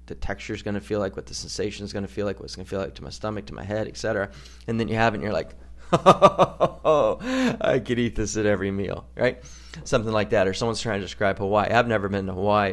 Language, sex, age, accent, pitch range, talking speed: English, male, 30-49, American, 85-105 Hz, 275 wpm